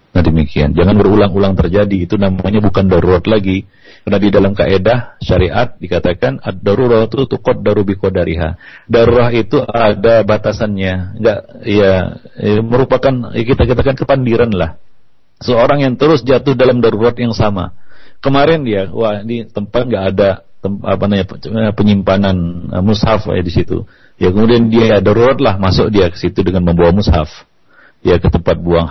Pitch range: 95-125 Hz